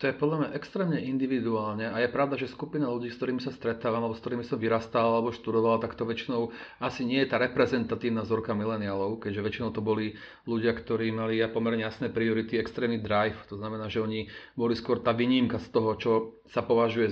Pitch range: 115-125 Hz